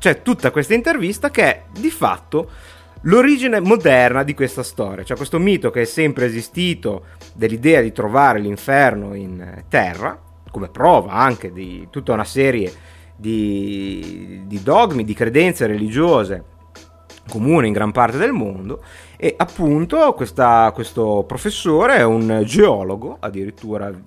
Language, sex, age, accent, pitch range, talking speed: Italian, male, 30-49, native, 100-155 Hz, 130 wpm